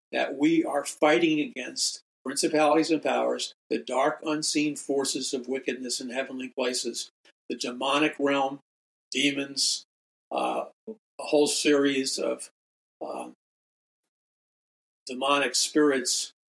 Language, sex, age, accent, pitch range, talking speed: English, male, 50-69, American, 125-160 Hz, 105 wpm